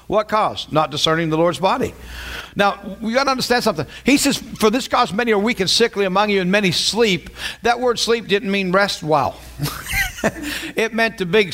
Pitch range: 120-195 Hz